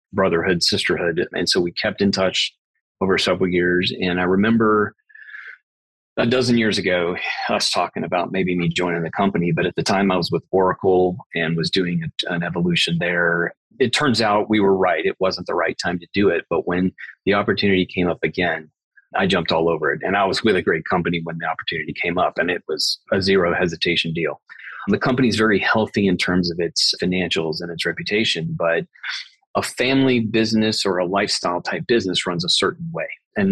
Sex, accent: male, American